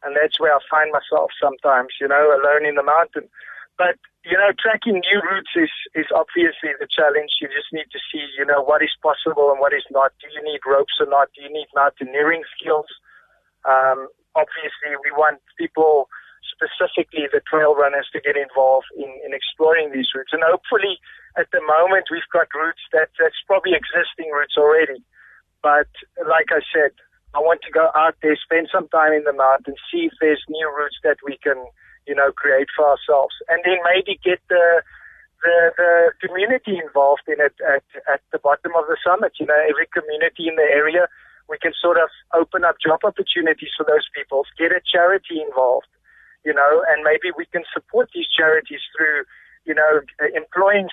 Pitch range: 140-175 Hz